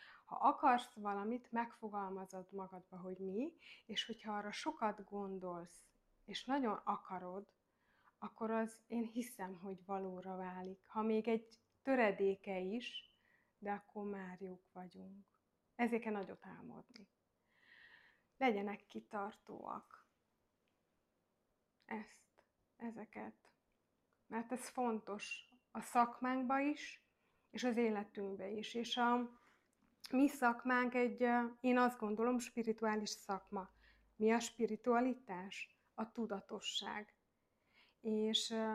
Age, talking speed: 30-49, 100 wpm